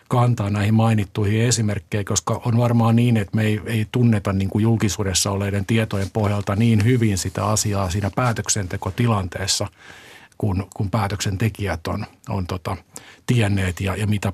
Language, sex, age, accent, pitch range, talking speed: Finnish, male, 50-69, native, 100-115 Hz, 140 wpm